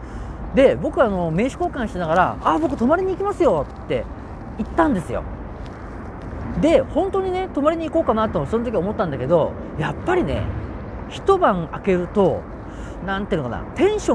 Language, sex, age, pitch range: Japanese, male, 40-59, 185-310 Hz